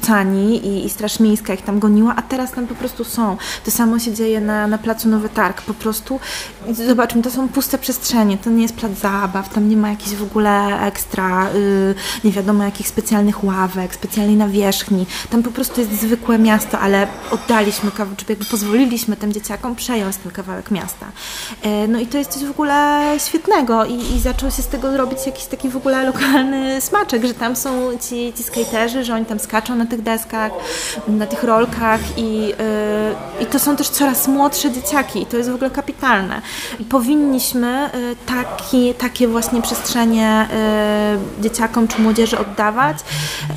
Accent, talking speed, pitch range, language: native, 175 wpm, 210-250 Hz, Polish